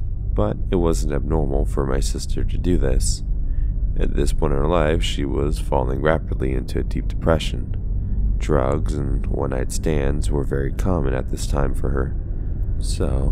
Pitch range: 70-95 Hz